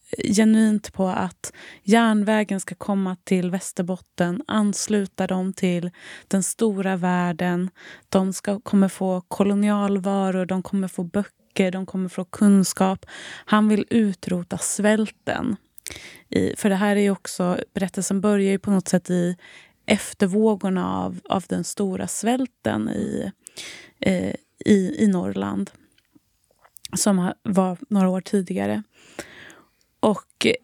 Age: 20-39